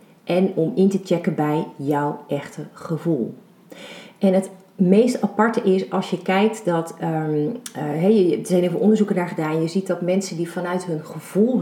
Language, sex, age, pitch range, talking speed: Dutch, female, 40-59, 170-210 Hz, 180 wpm